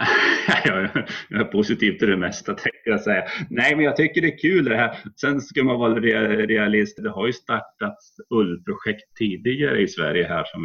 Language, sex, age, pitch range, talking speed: Swedish, male, 30-49, 95-135 Hz, 185 wpm